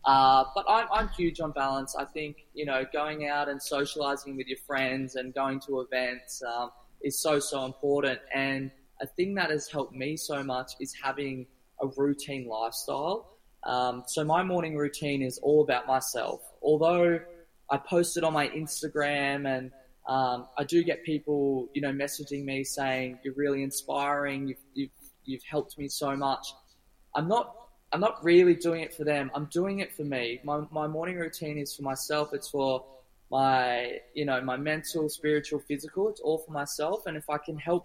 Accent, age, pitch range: Australian, 20-39, 130-155 Hz